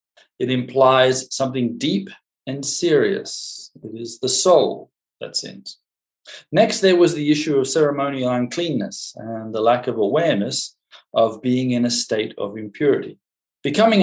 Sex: male